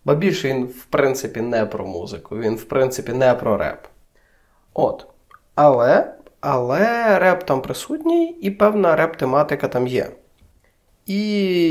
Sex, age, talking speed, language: male, 20-39, 135 wpm, Ukrainian